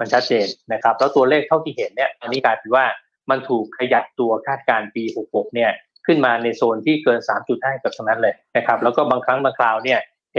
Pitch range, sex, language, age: 120-155 Hz, male, Thai, 20-39